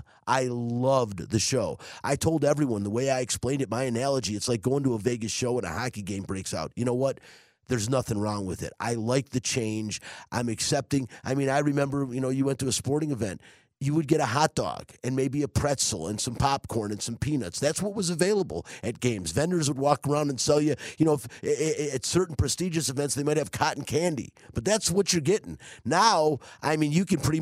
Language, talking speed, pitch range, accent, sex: English, 230 wpm, 115-145 Hz, American, male